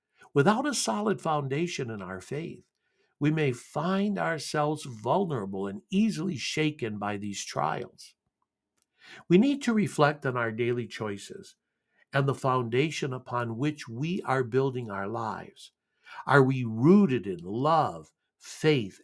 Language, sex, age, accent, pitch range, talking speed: English, male, 60-79, American, 130-200 Hz, 130 wpm